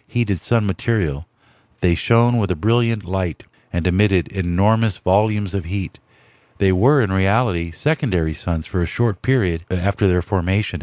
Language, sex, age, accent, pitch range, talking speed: English, male, 50-69, American, 90-115 Hz, 155 wpm